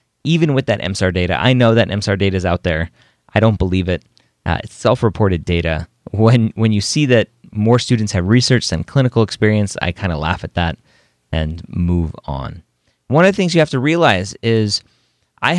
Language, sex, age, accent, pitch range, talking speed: English, male, 30-49, American, 95-130 Hz, 200 wpm